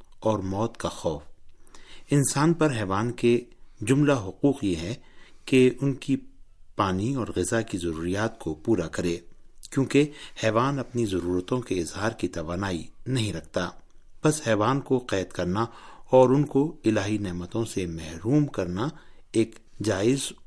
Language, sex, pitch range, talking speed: Urdu, male, 90-120 Hz, 140 wpm